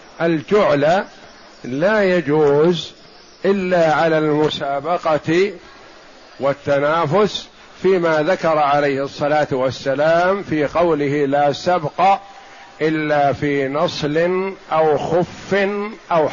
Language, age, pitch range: Arabic, 50-69, 150-185 Hz